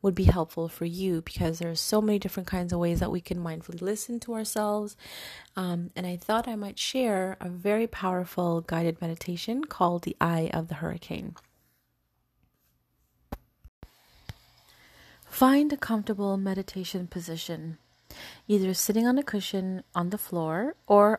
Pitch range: 165-205 Hz